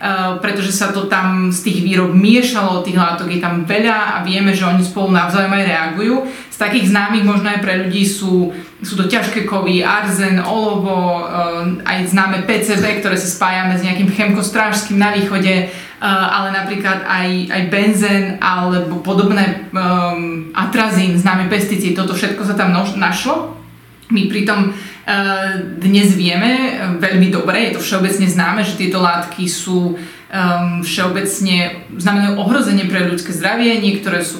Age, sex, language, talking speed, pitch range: 20-39, female, Slovak, 155 wpm, 185-210 Hz